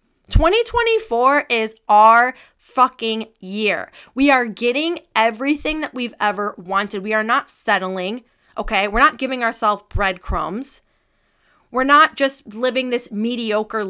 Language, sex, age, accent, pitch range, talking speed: English, female, 20-39, American, 220-290 Hz, 125 wpm